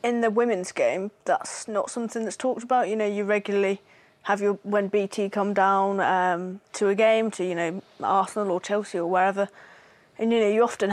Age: 20-39